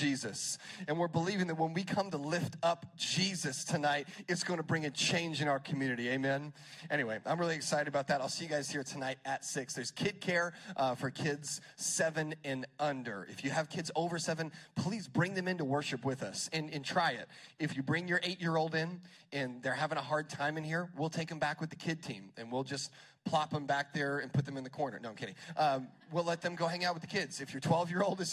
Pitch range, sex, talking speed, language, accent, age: 140-170 Hz, male, 245 wpm, English, American, 30-49